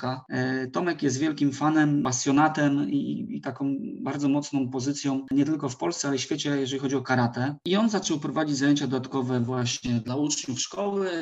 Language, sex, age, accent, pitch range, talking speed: Polish, male, 20-39, native, 125-145 Hz, 175 wpm